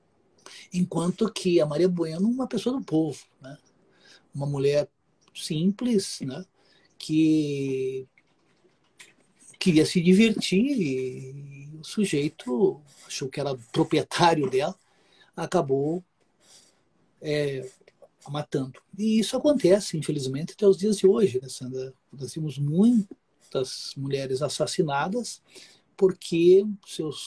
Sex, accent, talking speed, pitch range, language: male, Brazilian, 100 wpm, 140-185 Hz, Portuguese